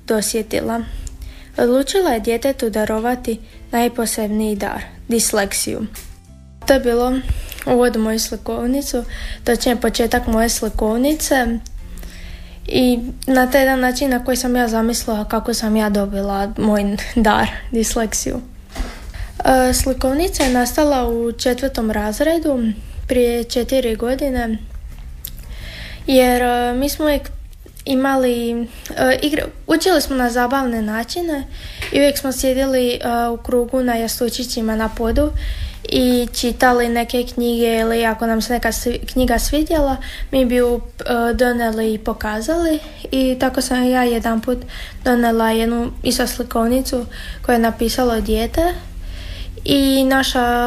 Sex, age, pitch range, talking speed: female, 20-39, 225-260 Hz, 120 wpm